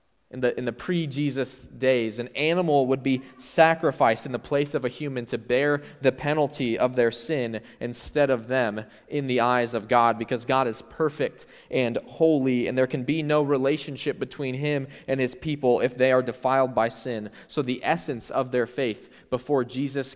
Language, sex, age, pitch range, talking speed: English, male, 20-39, 120-135 Hz, 190 wpm